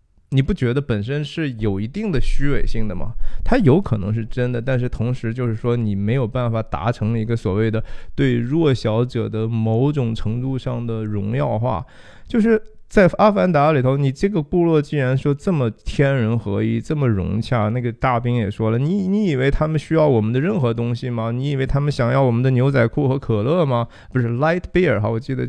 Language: Chinese